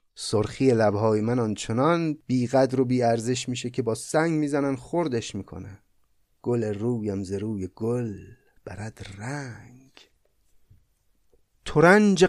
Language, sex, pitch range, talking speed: Persian, male, 110-145 Hz, 105 wpm